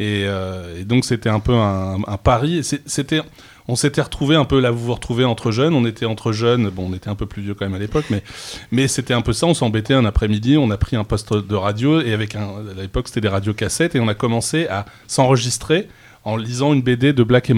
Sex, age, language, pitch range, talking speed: male, 20-39, French, 110-135 Hz, 265 wpm